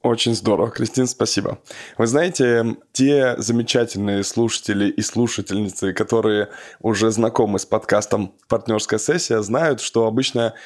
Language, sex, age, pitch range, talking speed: Russian, male, 20-39, 110-125 Hz, 120 wpm